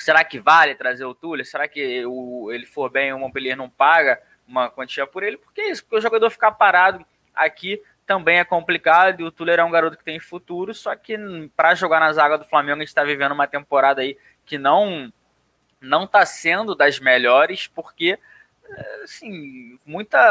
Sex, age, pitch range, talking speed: male, 20-39, 135-190 Hz, 200 wpm